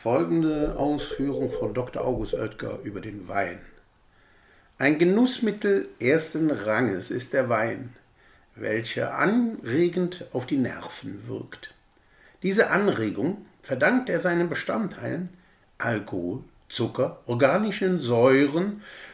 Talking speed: 100 wpm